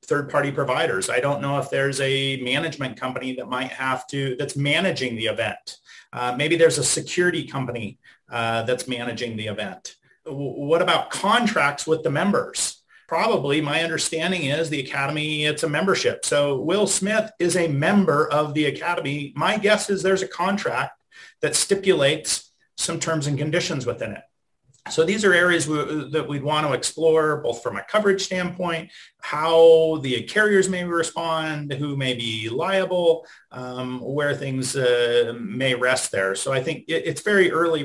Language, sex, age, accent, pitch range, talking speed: English, male, 40-59, American, 125-160 Hz, 165 wpm